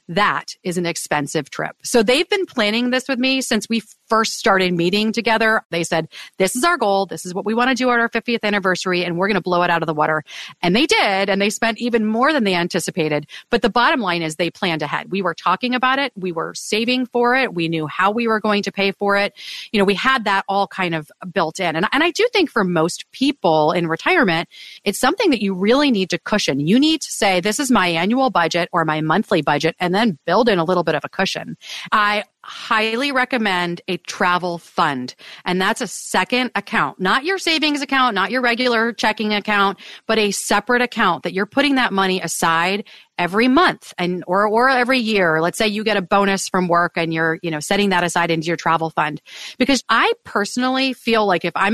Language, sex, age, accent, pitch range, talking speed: English, female, 30-49, American, 175-240 Hz, 230 wpm